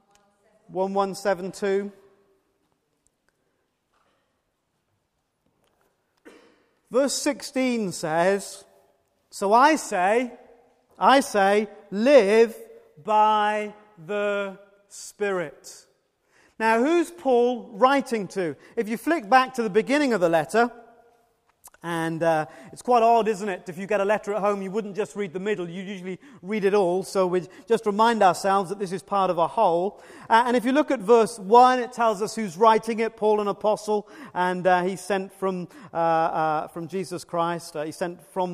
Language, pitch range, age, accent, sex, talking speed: English, 180-230 Hz, 40-59, British, male, 150 wpm